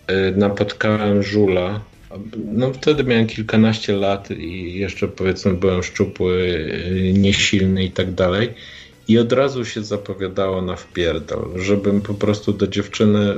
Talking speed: 120 wpm